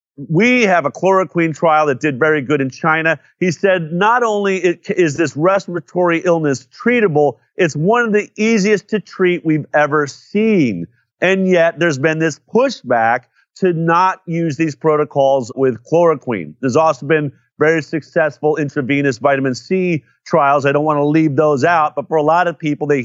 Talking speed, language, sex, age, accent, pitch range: 170 wpm, English, male, 40-59, American, 145-180 Hz